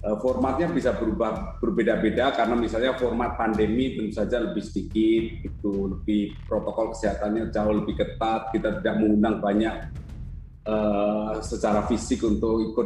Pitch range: 105-125 Hz